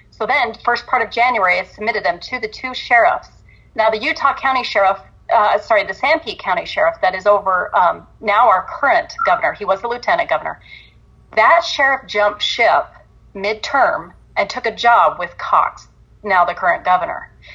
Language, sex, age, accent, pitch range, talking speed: English, female, 30-49, American, 195-250 Hz, 180 wpm